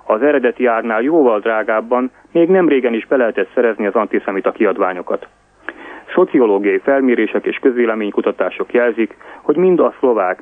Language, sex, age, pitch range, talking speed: Hungarian, male, 30-49, 110-145 Hz, 140 wpm